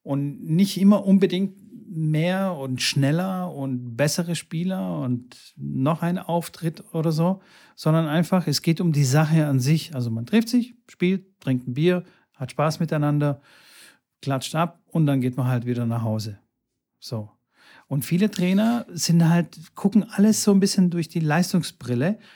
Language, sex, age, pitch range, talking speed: German, male, 40-59, 135-190 Hz, 160 wpm